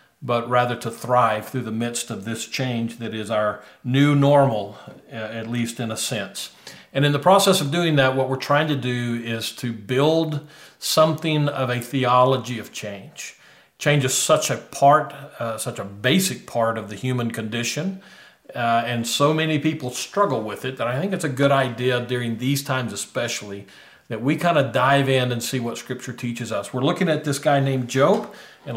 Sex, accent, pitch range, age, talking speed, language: male, American, 115-140 Hz, 50-69, 195 wpm, English